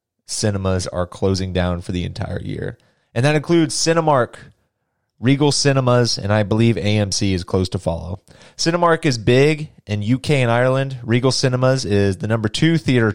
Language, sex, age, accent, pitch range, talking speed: English, male, 30-49, American, 100-125 Hz, 165 wpm